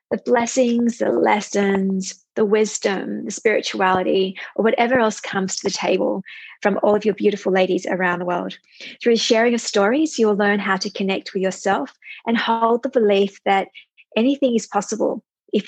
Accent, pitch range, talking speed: Australian, 190-235 Hz, 170 wpm